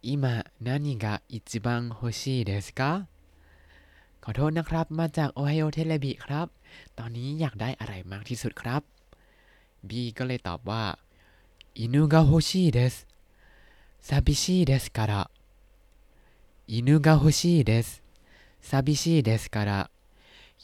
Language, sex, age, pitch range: Thai, male, 20-39, 100-140 Hz